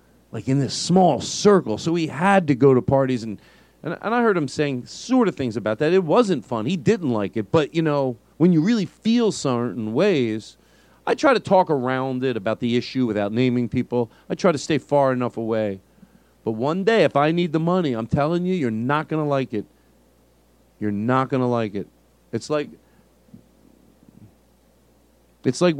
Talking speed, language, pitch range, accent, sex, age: 200 wpm, English, 100-145 Hz, American, male, 40-59